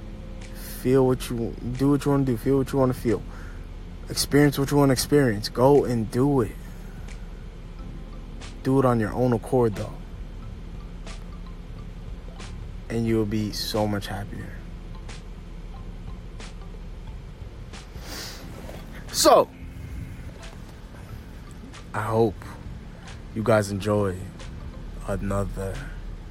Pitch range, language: 90-110 Hz, English